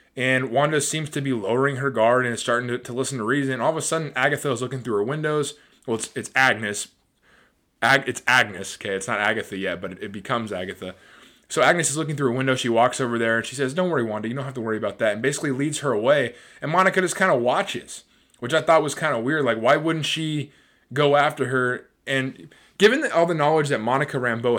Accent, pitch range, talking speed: American, 120-155 Hz, 245 wpm